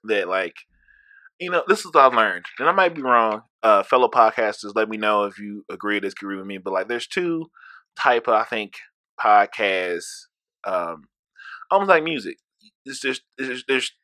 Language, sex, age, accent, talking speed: English, male, 20-39, American, 185 wpm